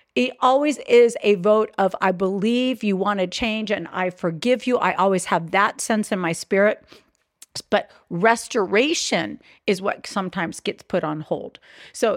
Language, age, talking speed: English, 50-69, 170 wpm